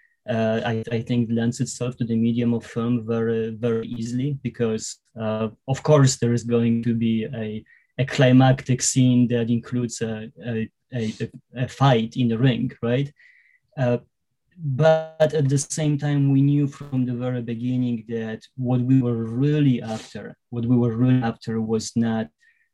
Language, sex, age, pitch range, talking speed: English, male, 20-39, 115-135 Hz, 165 wpm